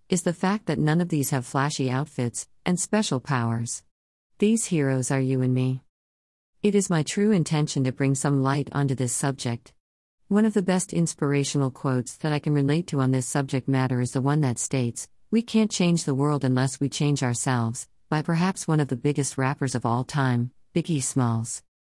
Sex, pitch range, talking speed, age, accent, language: female, 130-165 Hz, 200 wpm, 50-69, American, English